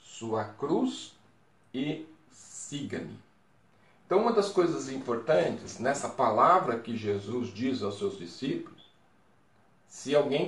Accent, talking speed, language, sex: Brazilian, 110 wpm, Portuguese, male